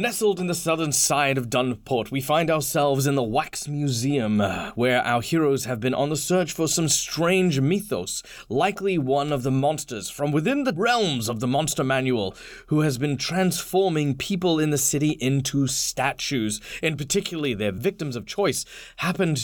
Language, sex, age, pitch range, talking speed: English, male, 20-39, 125-160 Hz, 175 wpm